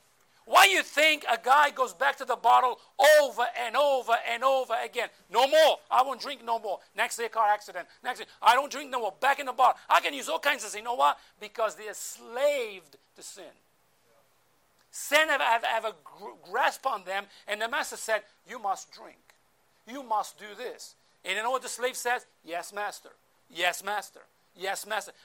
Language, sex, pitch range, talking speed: English, male, 215-295 Hz, 205 wpm